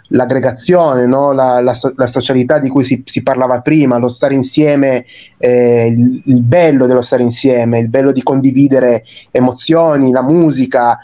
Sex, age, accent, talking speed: male, 30-49, native, 160 wpm